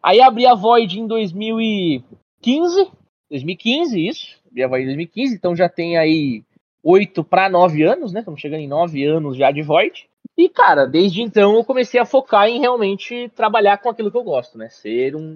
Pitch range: 140-205 Hz